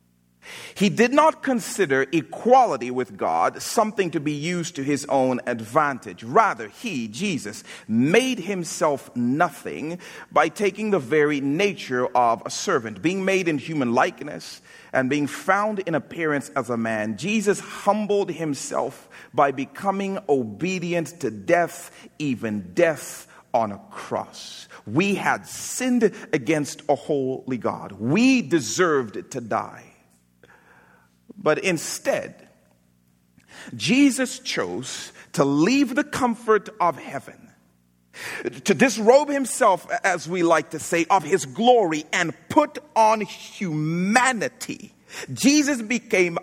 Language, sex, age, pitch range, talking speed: English, male, 40-59, 145-220 Hz, 120 wpm